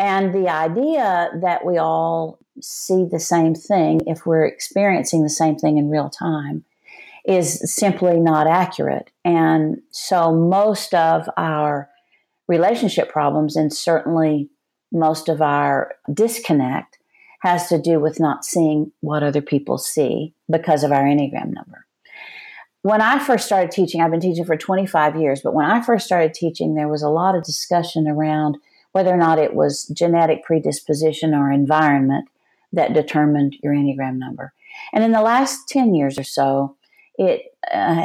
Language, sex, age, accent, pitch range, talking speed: English, female, 50-69, American, 150-195 Hz, 155 wpm